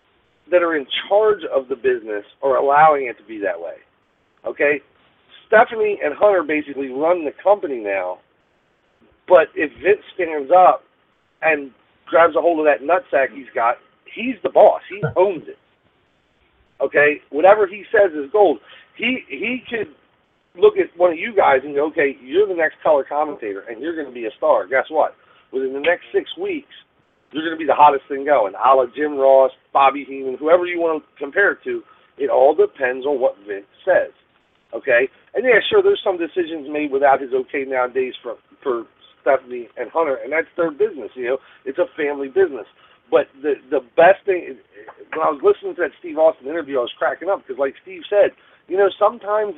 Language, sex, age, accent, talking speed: English, male, 40-59, American, 195 wpm